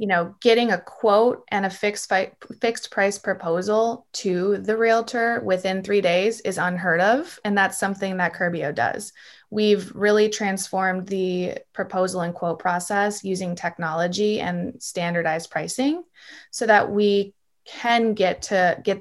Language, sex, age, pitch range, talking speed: English, female, 20-39, 175-210 Hz, 145 wpm